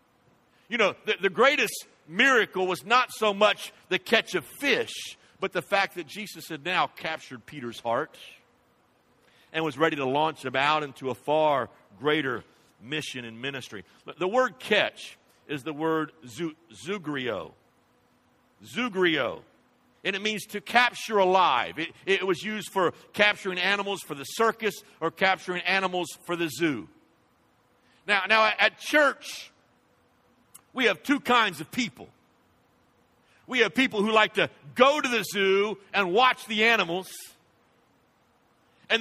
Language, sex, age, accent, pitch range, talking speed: English, male, 50-69, American, 165-220 Hz, 145 wpm